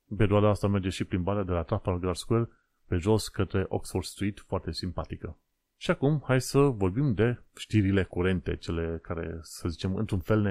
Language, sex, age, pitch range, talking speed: Romanian, male, 30-49, 90-115 Hz, 185 wpm